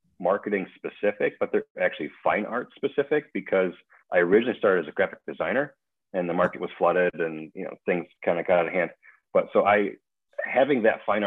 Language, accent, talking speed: English, American, 195 wpm